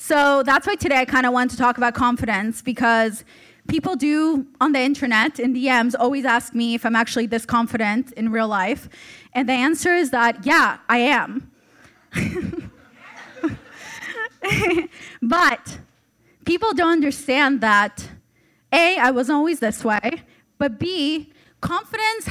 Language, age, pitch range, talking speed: English, 20-39, 235-305 Hz, 145 wpm